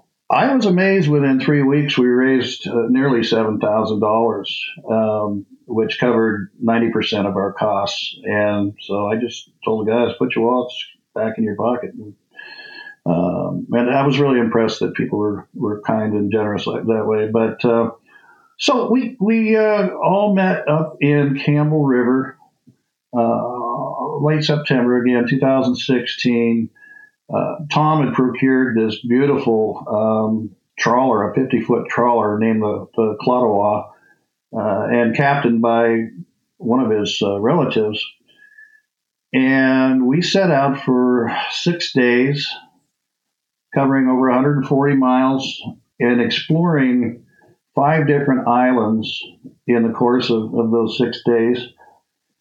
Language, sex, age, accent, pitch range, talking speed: English, male, 50-69, American, 115-150 Hz, 135 wpm